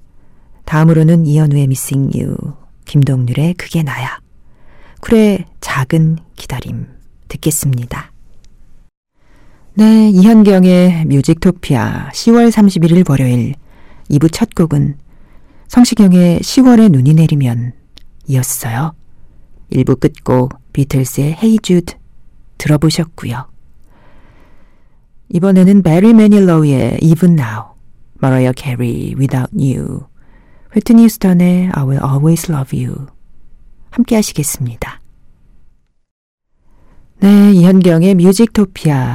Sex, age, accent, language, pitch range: female, 40-59, native, Korean, 130-180 Hz